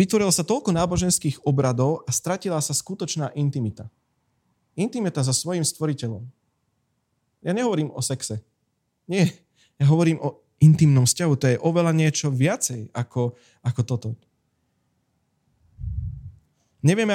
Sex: male